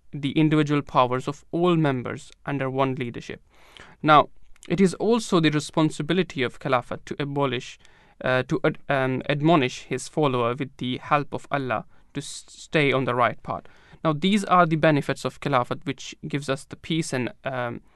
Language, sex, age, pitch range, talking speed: English, male, 20-39, 125-160 Hz, 175 wpm